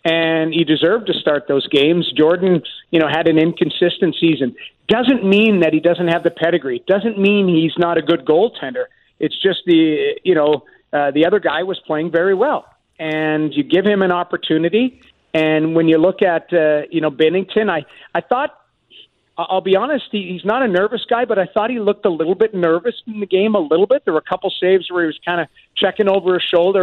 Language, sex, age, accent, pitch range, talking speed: English, male, 40-59, American, 155-190 Hz, 215 wpm